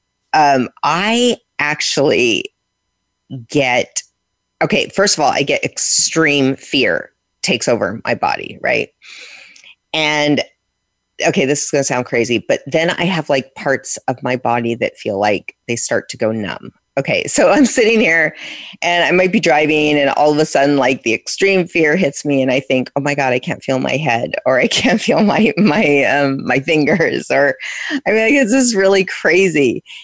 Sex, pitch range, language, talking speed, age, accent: female, 135-195 Hz, English, 180 wpm, 30-49, American